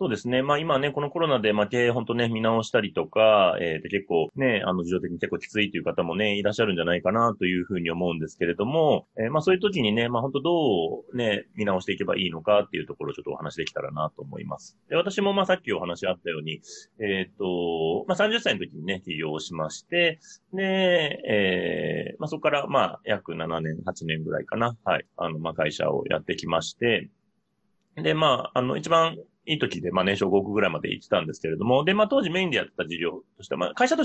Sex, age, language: male, 30-49, Japanese